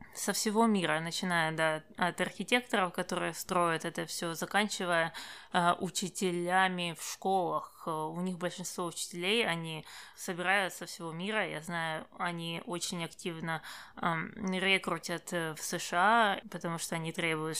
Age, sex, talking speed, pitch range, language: 20-39, female, 130 wpm, 170-195 Hz, Russian